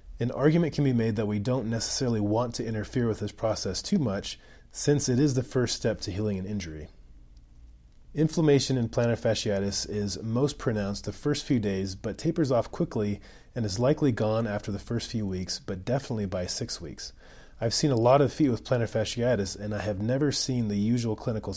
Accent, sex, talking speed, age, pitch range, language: American, male, 205 wpm, 30-49, 100-125 Hz, English